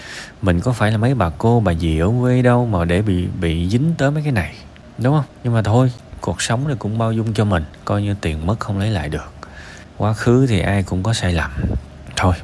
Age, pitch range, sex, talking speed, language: 20-39, 85-115 Hz, male, 245 wpm, Vietnamese